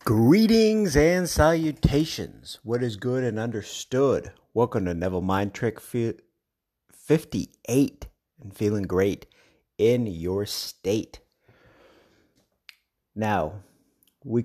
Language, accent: English, American